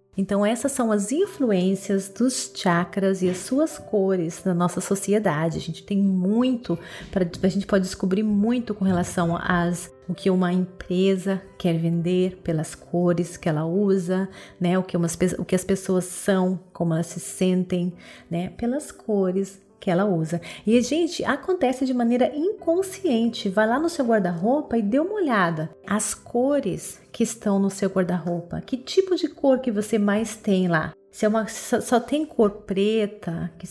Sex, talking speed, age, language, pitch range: female, 175 wpm, 30-49, Portuguese, 185-225 Hz